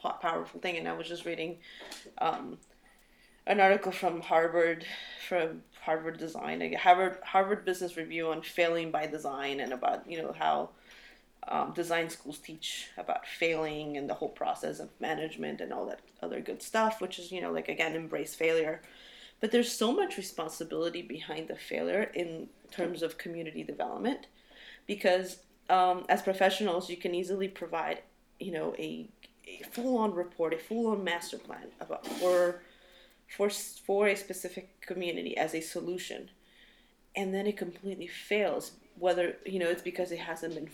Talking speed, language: 160 wpm, English